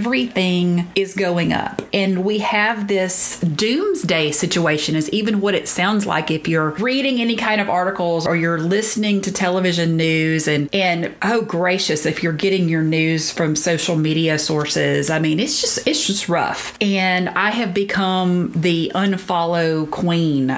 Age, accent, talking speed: 30-49, American, 165 wpm